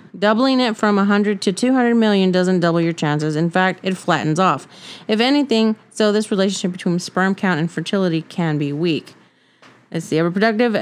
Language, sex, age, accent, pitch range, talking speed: English, female, 30-49, American, 165-215 Hz, 175 wpm